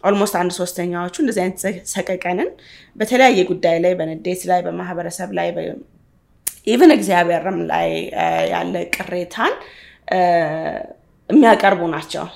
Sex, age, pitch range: female, 20-39, 170-210 Hz